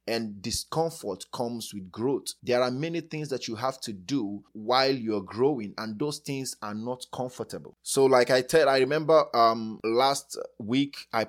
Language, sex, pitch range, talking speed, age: English, male, 110-135 Hz, 175 wpm, 20-39